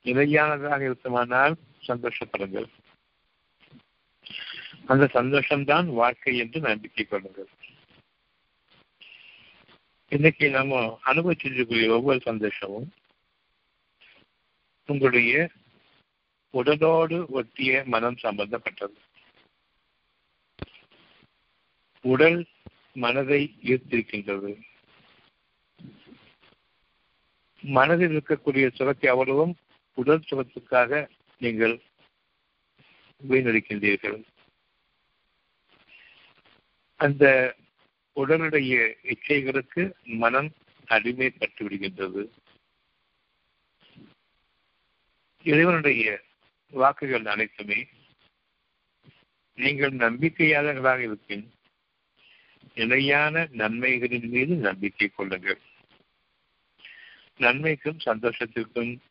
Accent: native